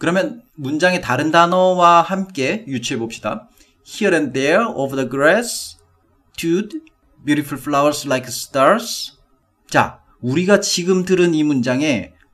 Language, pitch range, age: Korean, 125-195 Hz, 40-59